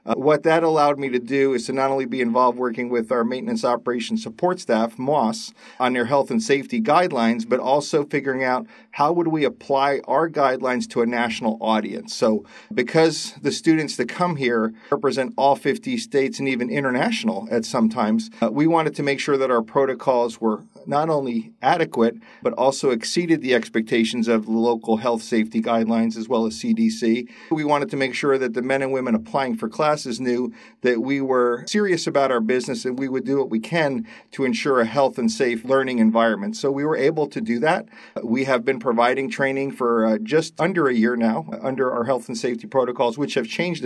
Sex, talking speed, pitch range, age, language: male, 205 wpm, 120-145 Hz, 40-59, English